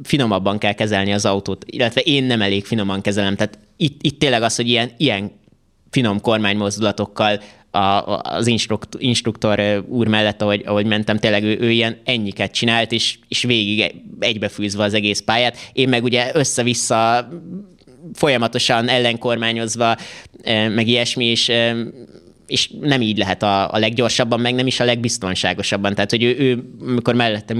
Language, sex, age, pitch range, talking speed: Hungarian, male, 20-39, 110-125 Hz, 150 wpm